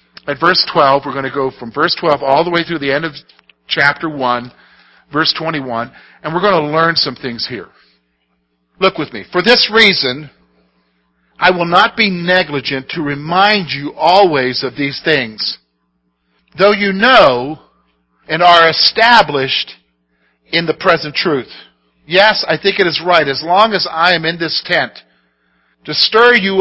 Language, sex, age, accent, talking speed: English, male, 50-69, American, 165 wpm